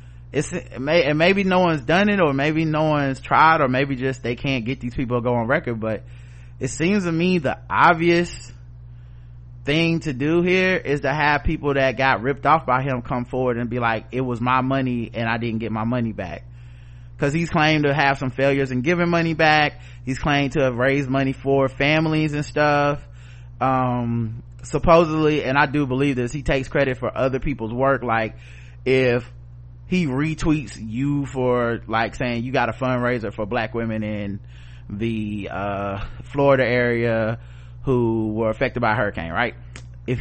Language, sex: English, male